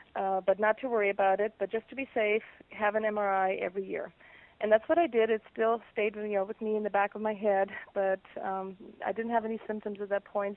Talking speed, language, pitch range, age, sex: 245 wpm, English, 195-220 Hz, 30-49, female